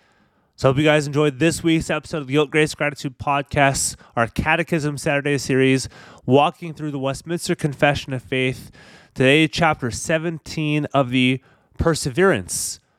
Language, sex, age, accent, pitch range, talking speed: English, male, 30-49, American, 125-165 Hz, 150 wpm